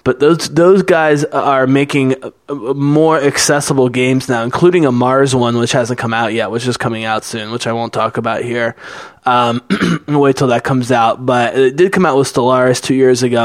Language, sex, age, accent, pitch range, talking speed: English, male, 20-39, American, 125-150 Hz, 205 wpm